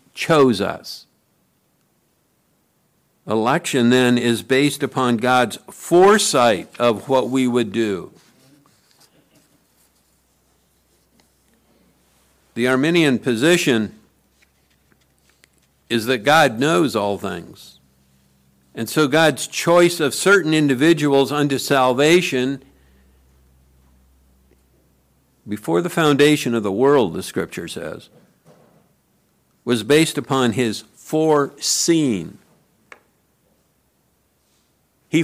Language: English